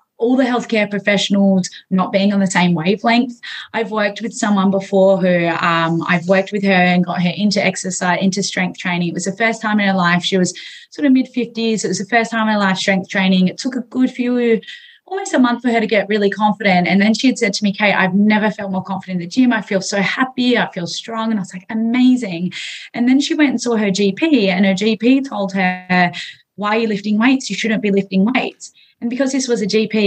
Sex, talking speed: female, 245 wpm